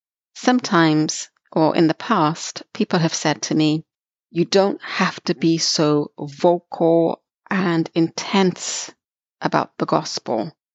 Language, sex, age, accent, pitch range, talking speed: English, female, 30-49, British, 160-205 Hz, 125 wpm